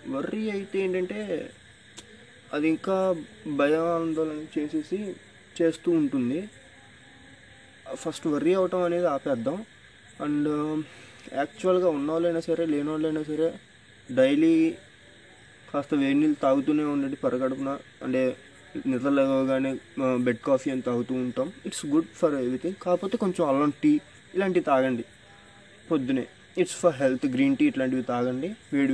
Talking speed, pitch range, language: 115 wpm, 140-190 Hz, Telugu